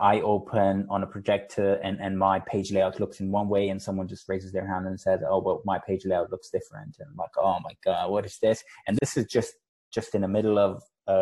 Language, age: English, 20-39